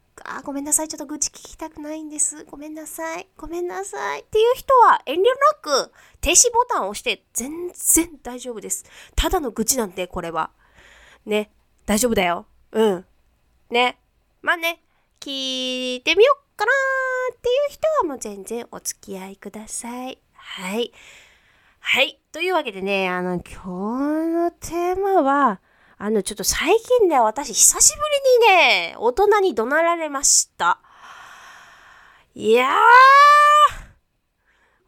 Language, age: Japanese, 20-39